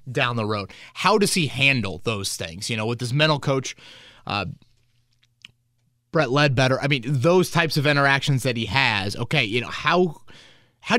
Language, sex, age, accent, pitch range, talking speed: English, male, 20-39, American, 115-135 Hz, 175 wpm